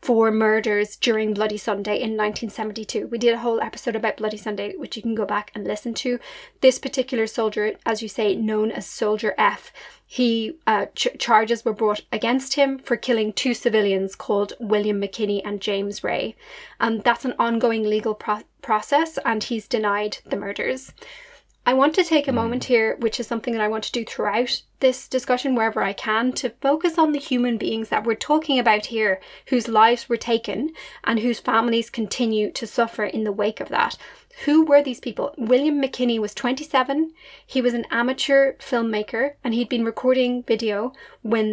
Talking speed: 185 wpm